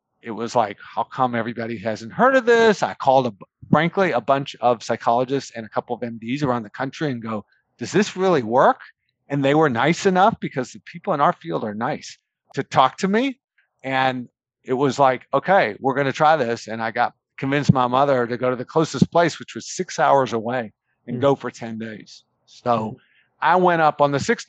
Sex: male